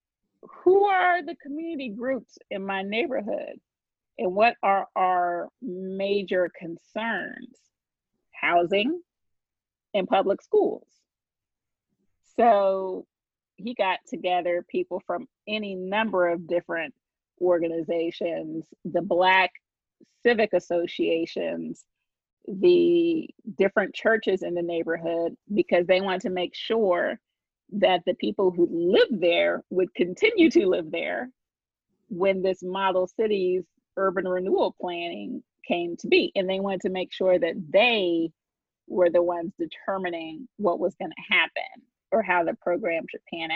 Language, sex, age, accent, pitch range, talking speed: English, female, 40-59, American, 175-230 Hz, 125 wpm